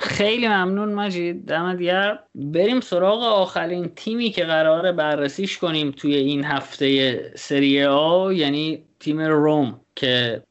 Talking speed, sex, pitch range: 120 wpm, male, 135-180 Hz